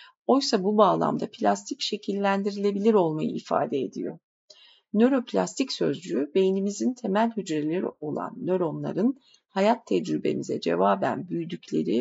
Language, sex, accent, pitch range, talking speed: Turkish, female, native, 160-230 Hz, 95 wpm